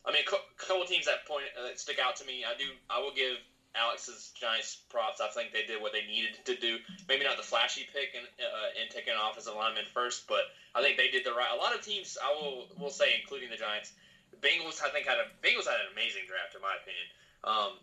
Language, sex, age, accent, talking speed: English, male, 20-39, American, 255 wpm